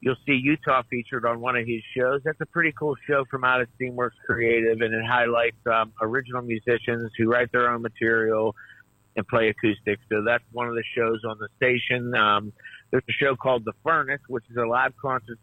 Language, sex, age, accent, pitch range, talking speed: English, male, 50-69, American, 110-125 Hz, 210 wpm